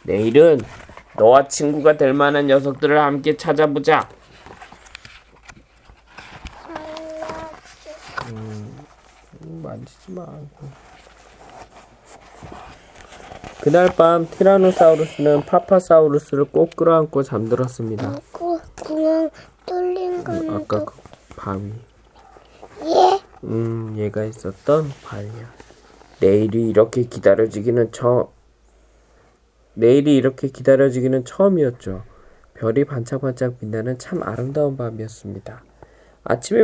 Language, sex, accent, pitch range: Korean, male, native, 115-155 Hz